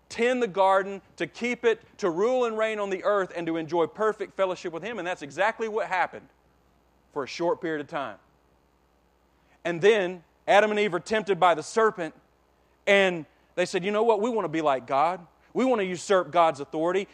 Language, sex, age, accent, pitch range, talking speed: English, male, 40-59, American, 170-230 Hz, 205 wpm